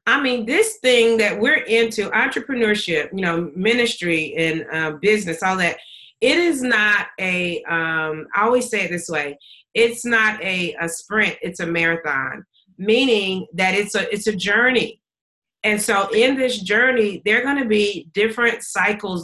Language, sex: English, female